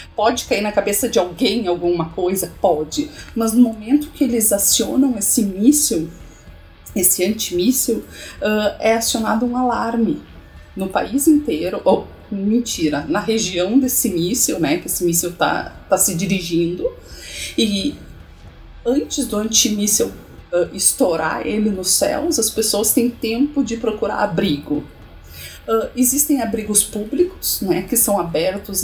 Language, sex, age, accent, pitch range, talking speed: Portuguese, female, 40-59, Brazilian, 175-235 Hz, 135 wpm